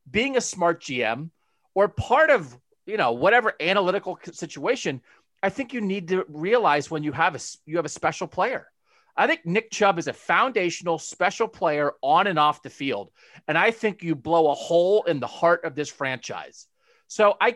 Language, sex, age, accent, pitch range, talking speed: English, male, 40-59, American, 150-205 Hz, 190 wpm